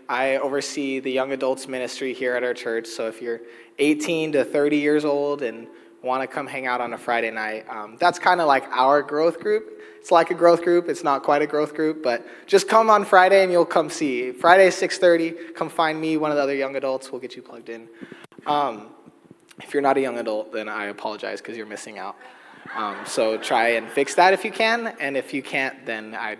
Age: 20-39